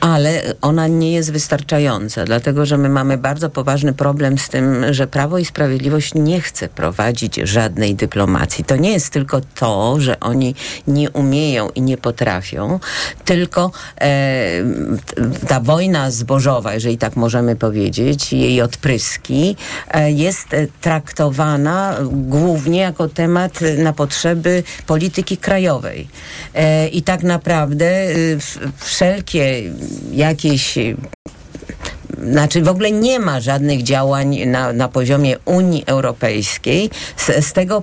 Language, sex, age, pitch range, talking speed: Polish, female, 50-69, 130-170 Hz, 115 wpm